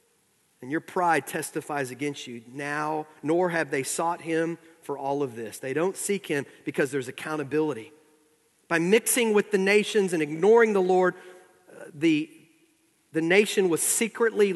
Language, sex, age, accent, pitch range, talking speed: English, male, 40-59, American, 140-205 Hz, 155 wpm